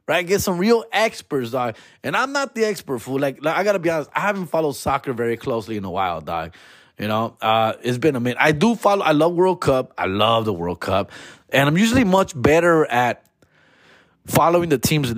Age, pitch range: 30-49, 120-175 Hz